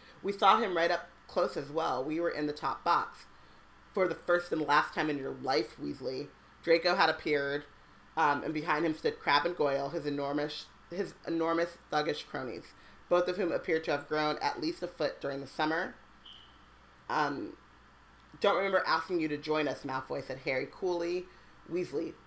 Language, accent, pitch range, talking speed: English, American, 150-185 Hz, 185 wpm